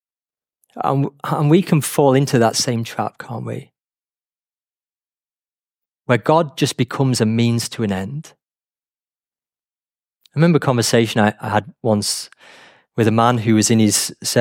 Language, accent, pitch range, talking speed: English, British, 110-145 Hz, 140 wpm